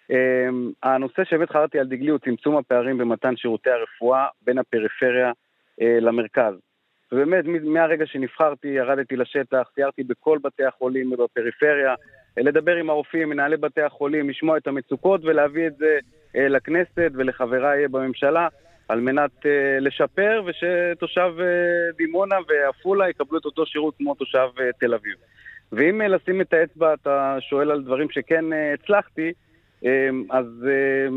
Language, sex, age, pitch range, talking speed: Hebrew, male, 30-49, 130-160 Hz, 140 wpm